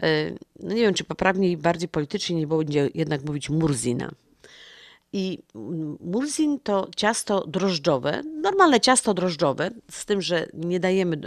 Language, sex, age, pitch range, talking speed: Polish, female, 50-69, 160-210 Hz, 135 wpm